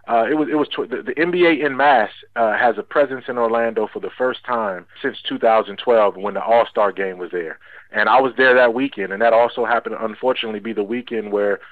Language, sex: English, male